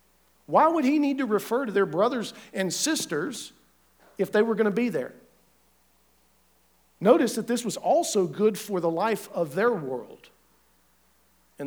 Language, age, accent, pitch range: English, 50-69, American, 145-215 Hz